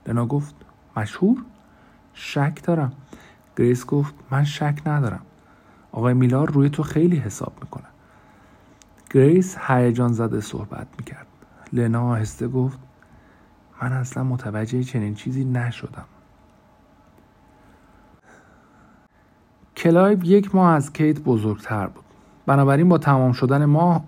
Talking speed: 105 wpm